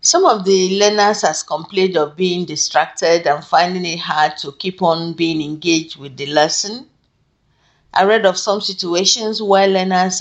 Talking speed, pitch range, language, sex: 165 wpm, 155-190 Hz, English, female